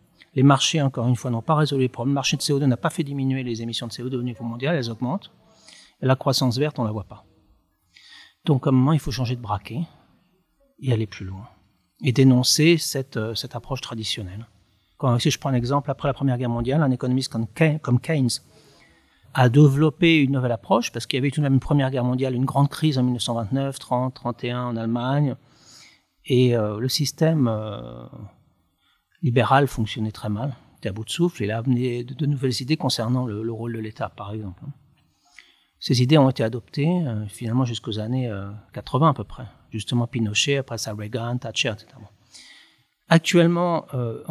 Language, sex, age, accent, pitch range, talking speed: French, male, 40-59, French, 115-145 Hz, 200 wpm